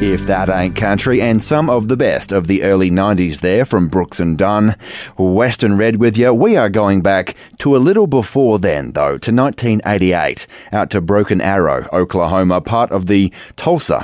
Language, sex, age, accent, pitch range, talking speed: English, male, 30-49, Australian, 90-115 Hz, 185 wpm